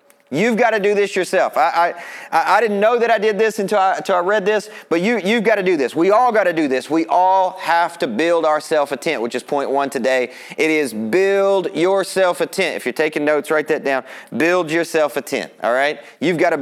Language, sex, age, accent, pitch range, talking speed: English, male, 30-49, American, 160-215 Hz, 250 wpm